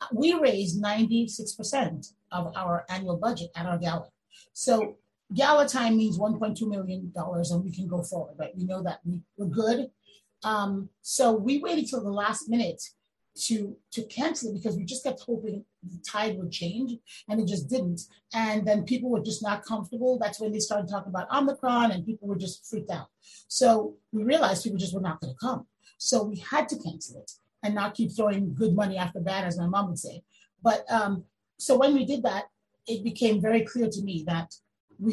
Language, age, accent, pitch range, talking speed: English, 30-49, American, 185-235 Hz, 200 wpm